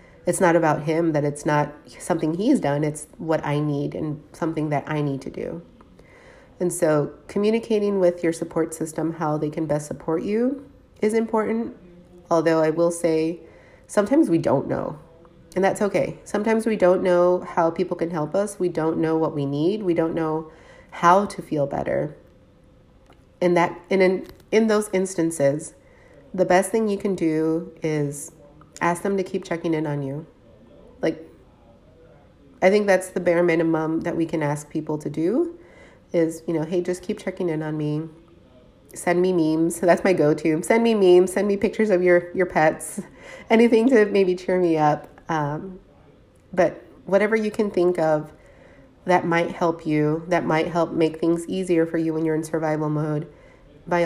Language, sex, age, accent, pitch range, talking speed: English, female, 30-49, American, 155-185 Hz, 180 wpm